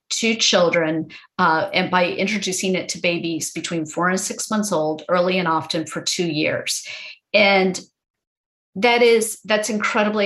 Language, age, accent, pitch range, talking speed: English, 40-59, American, 175-220 Hz, 150 wpm